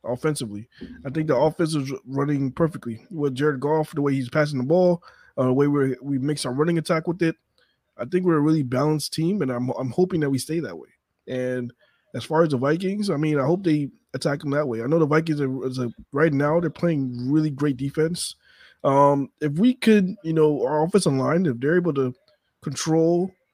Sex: male